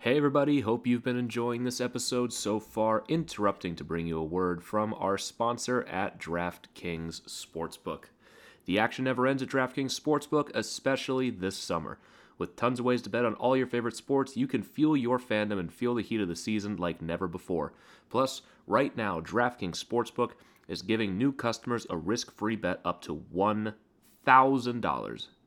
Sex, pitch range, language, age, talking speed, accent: male, 95-120 Hz, English, 30-49, 175 wpm, American